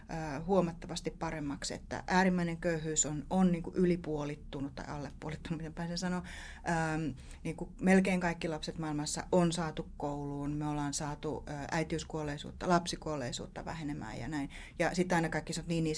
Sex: female